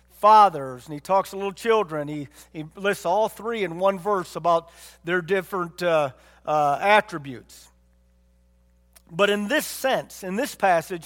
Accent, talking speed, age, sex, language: American, 150 wpm, 50-69, male, English